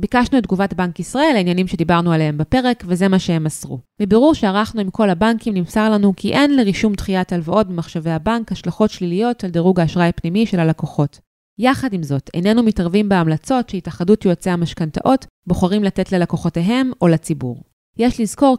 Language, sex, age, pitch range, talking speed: Hebrew, female, 20-39, 165-225 Hz, 165 wpm